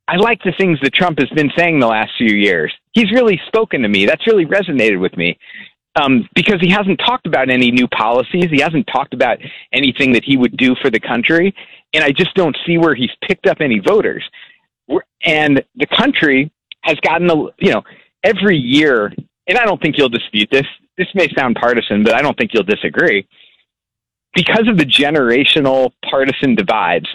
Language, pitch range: English, 130-175 Hz